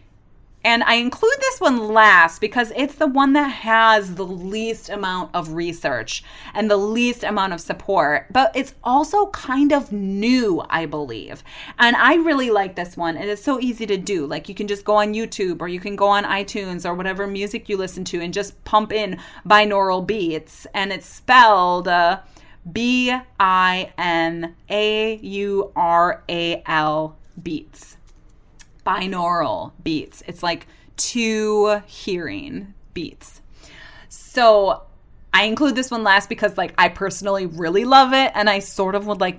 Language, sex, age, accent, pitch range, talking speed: English, female, 30-49, American, 185-245 Hz, 150 wpm